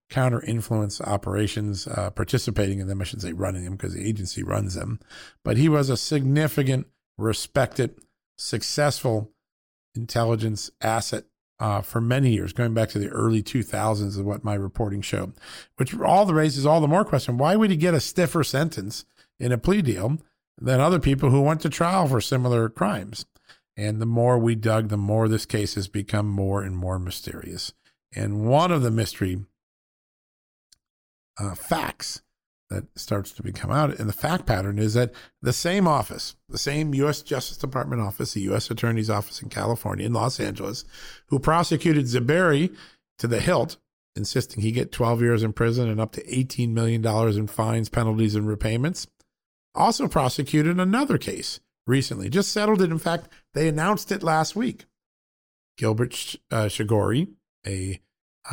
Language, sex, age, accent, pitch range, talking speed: English, male, 50-69, American, 105-145 Hz, 165 wpm